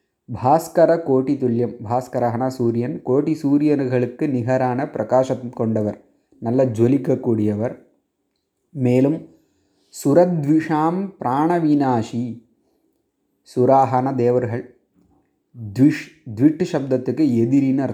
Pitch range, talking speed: 115-145 Hz, 70 wpm